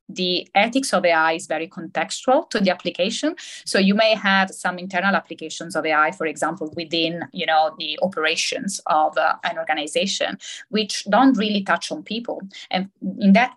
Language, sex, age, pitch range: English, female, 20-39, 165-195 Hz